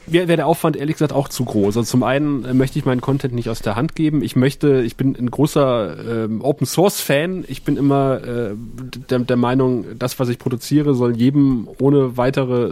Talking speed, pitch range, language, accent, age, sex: 210 wpm, 120-140 Hz, German, German, 30-49, male